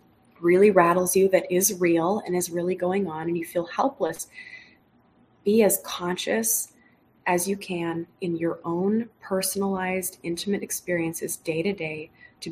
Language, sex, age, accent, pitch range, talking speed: English, female, 20-39, American, 170-205 Hz, 150 wpm